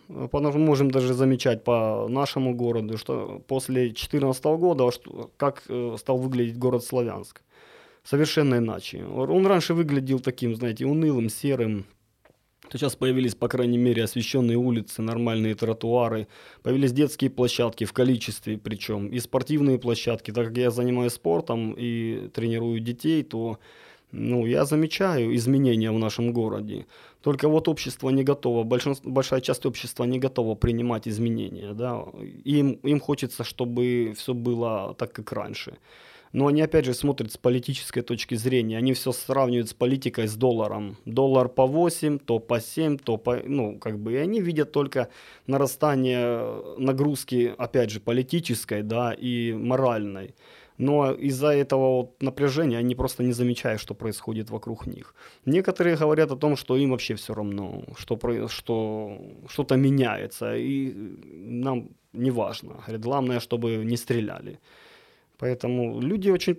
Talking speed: 140 wpm